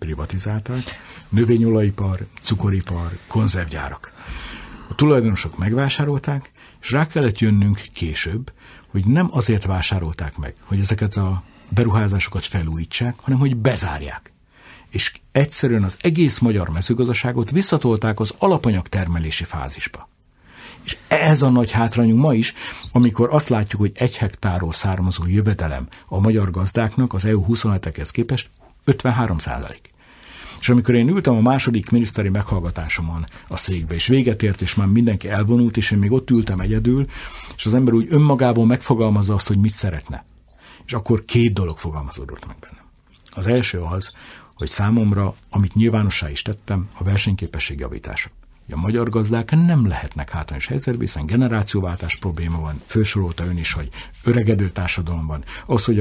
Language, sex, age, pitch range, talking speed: Hungarian, male, 60-79, 90-120 Hz, 140 wpm